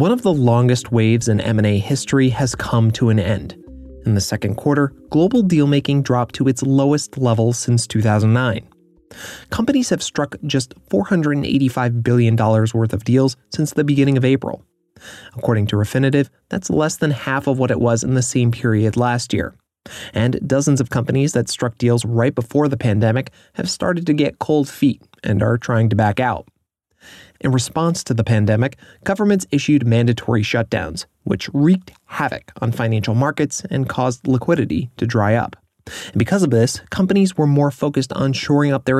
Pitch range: 115-140 Hz